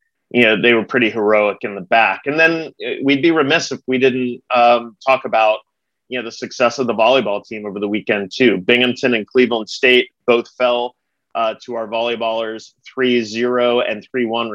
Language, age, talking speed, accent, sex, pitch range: English, 30-49, 185 wpm, American, male, 110-130 Hz